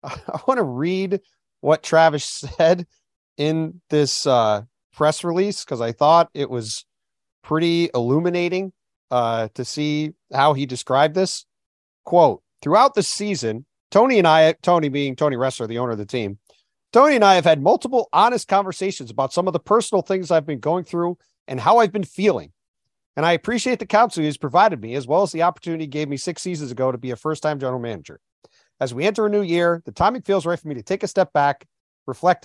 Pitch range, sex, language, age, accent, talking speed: 125-180 Hz, male, English, 40-59, American, 200 wpm